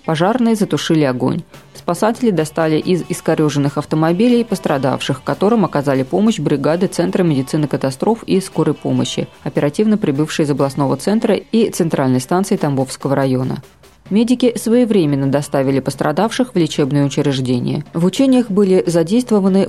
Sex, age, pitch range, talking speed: female, 20-39, 145-195 Hz, 120 wpm